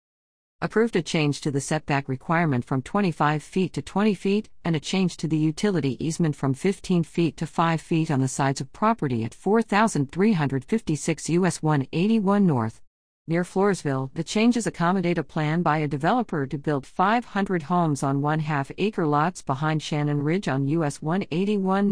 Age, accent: 50-69, American